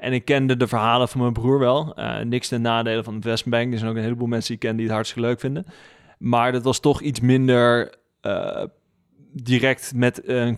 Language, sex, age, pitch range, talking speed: Dutch, male, 20-39, 110-125 Hz, 225 wpm